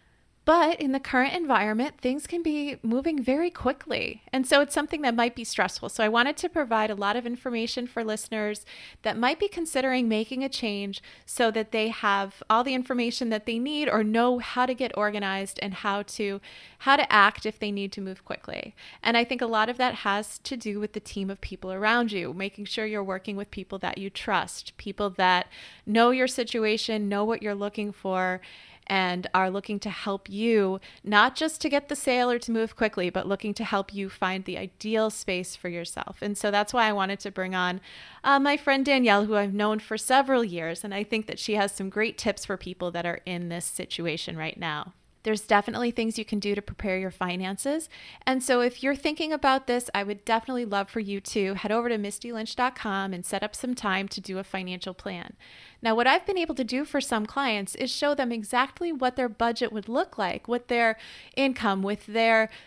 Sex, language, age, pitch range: female, English, 20-39, 200-250 Hz